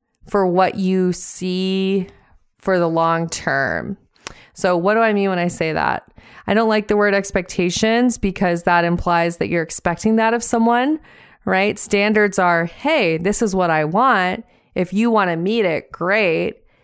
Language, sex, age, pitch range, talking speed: English, female, 20-39, 175-215 Hz, 170 wpm